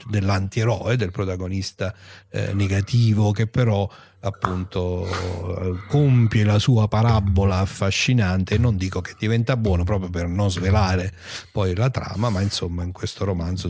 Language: Italian